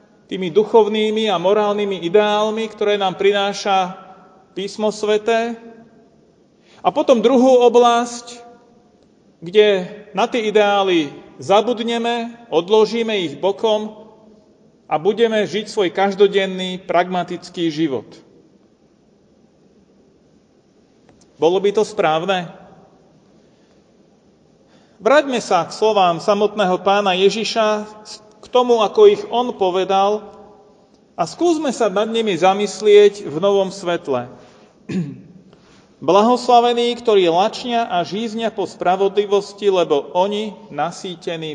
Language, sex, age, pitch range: Slovak, male, 40-59, 190-225 Hz